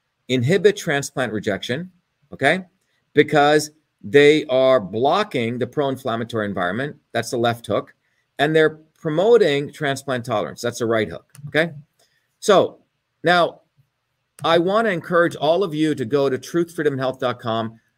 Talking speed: 130 wpm